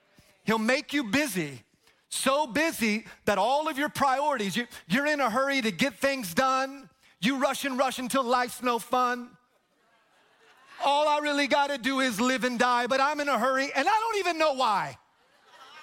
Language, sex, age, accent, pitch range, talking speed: English, male, 30-49, American, 175-280 Hz, 180 wpm